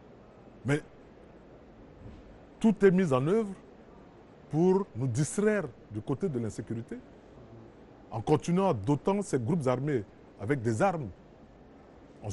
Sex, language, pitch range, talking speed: male, French, 110-160 Hz, 110 wpm